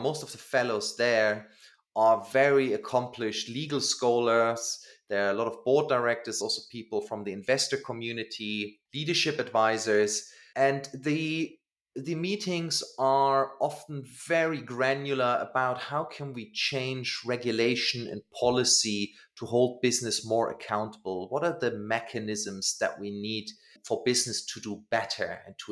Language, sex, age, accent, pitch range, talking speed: English, male, 30-49, German, 105-130 Hz, 140 wpm